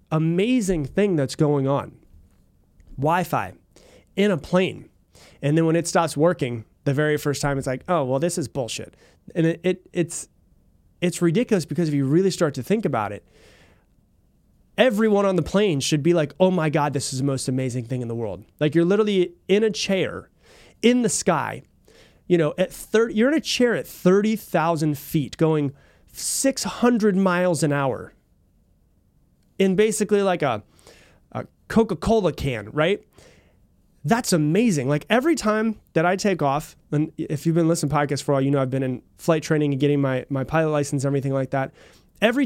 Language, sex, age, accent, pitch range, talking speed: English, male, 30-49, American, 140-185 Hz, 180 wpm